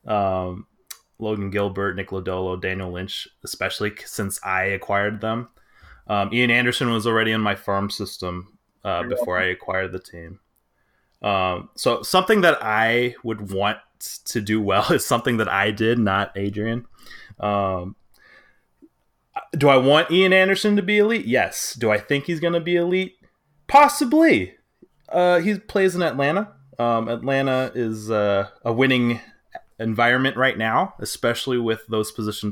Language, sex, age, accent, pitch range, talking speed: English, male, 20-39, American, 100-130 Hz, 150 wpm